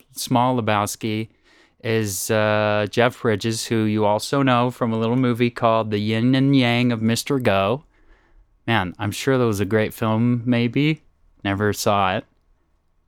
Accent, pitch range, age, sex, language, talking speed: American, 100-130 Hz, 20-39, male, English, 155 wpm